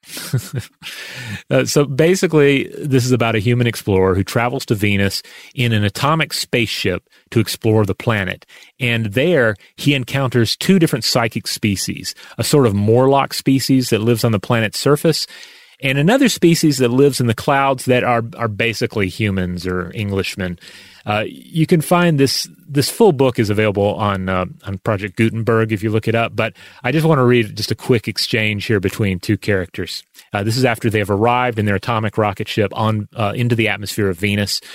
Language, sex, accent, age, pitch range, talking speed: English, male, American, 30-49, 105-150 Hz, 185 wpm